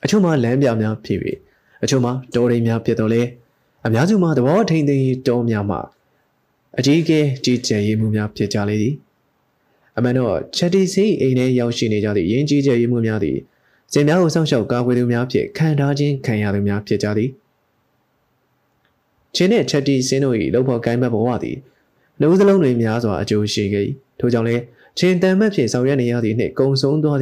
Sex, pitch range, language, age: male, 115-140 Hz, English, 20-39